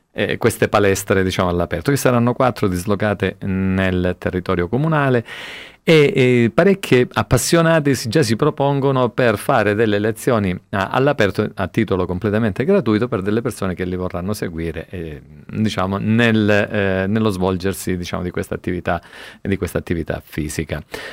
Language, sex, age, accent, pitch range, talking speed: Italian, male, 40-59, native, 95-115 Hz, 140 wpm